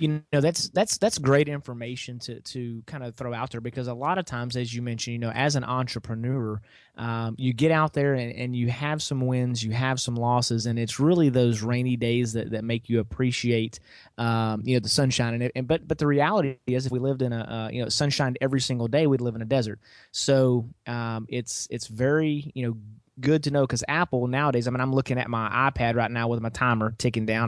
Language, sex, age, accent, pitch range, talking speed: English, male, 30-49, American, 115-135 Hz, 240 wpm